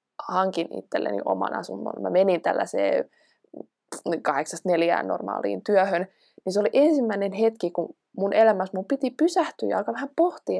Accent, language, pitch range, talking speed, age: native, Finnish, 175-225 Hz, 145 wpm, 20-39